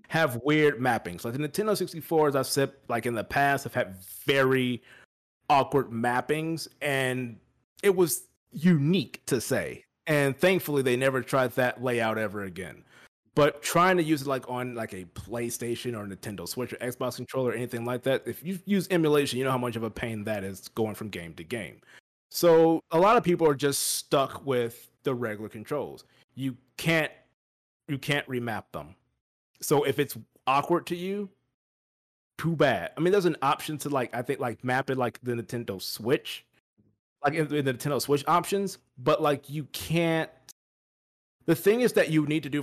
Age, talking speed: 30-49, 185 wpm